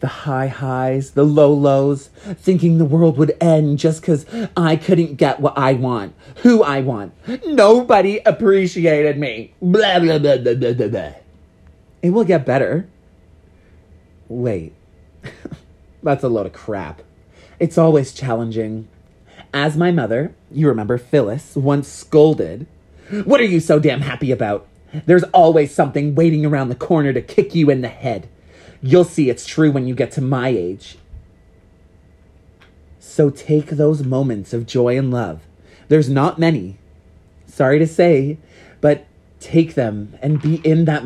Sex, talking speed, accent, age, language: male, 150 wpm, American, 30-49, English